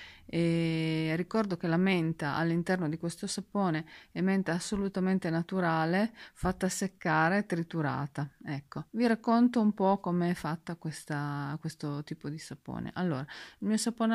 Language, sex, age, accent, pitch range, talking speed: Italian, female, 30-49, native, 160-195 Hz, 135 wpm